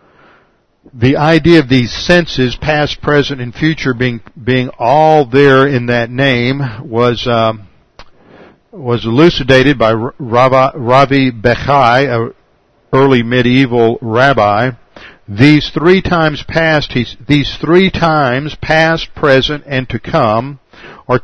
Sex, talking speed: male, 100 wpm